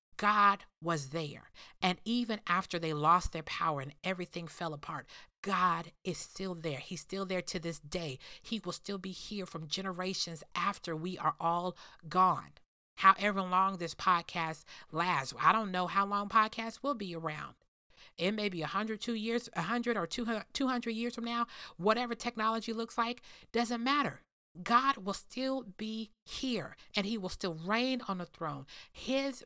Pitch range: 170-240 Hz